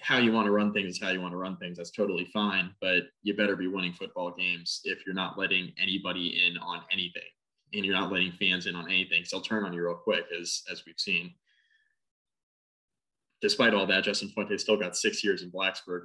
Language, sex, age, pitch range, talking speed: English, male, 20-39, 90-105 Hz, 230 wpm